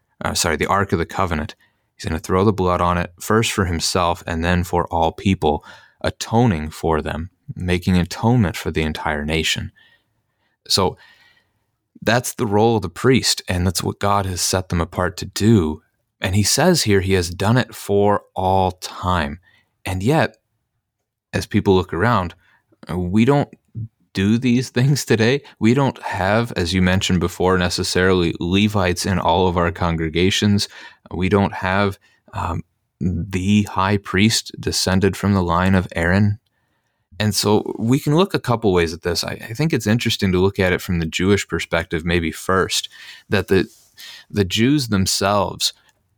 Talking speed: 170 wpm